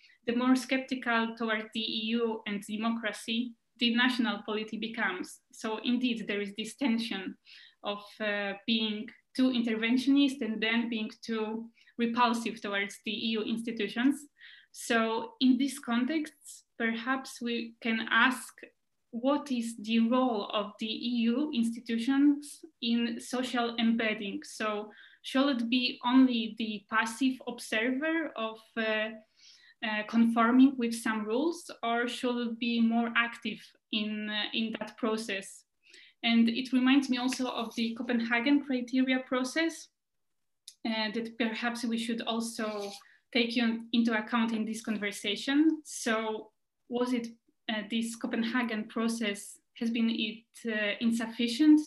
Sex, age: female, 20-39